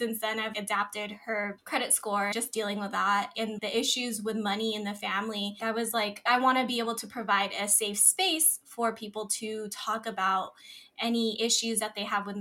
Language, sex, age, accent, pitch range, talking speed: English, female, 10-29, American, 205-245 Hz, 210 wpm